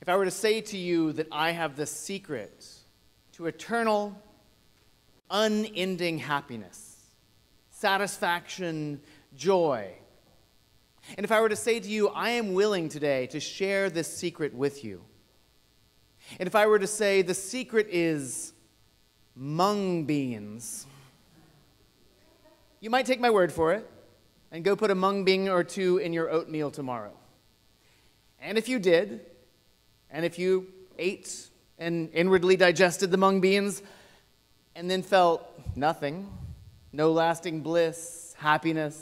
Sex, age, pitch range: male, 30-49, 140-185 Hz